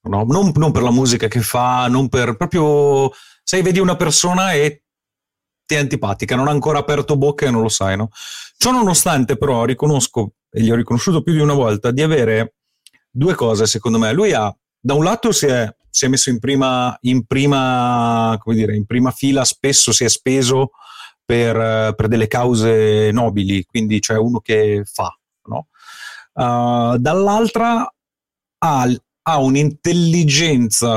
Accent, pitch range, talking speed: native, 115-150 Hz, 165 wpm